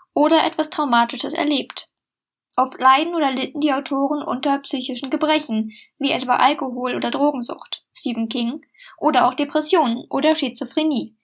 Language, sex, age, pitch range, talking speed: German, female, 10-29, 245-300 Hz, 135 wpm